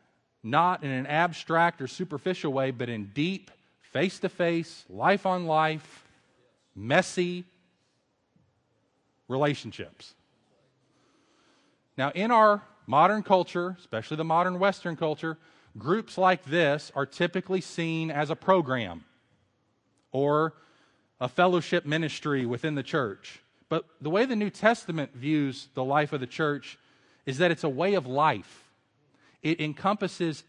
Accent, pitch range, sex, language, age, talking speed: American, 140-180 Hz, male, English, 40-59, 120 wpm